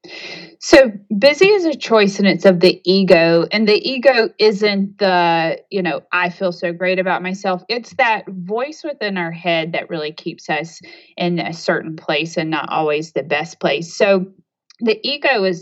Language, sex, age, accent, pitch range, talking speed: English, female, 30-49, American, 170-195 Hz, 180 wpm